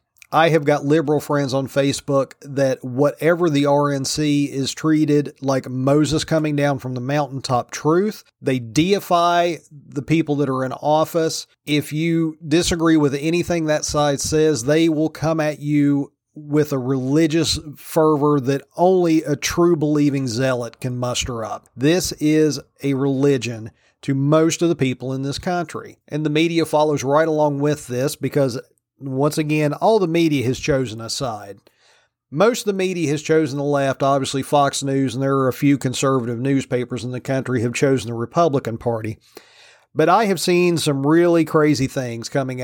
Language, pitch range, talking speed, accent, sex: English, 135-155 Hz, 170 wpm, American, male